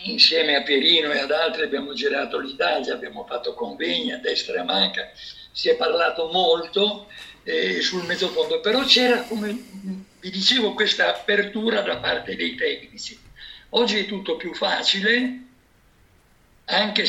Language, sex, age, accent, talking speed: Italian, male, 60-79, native, 145 wpm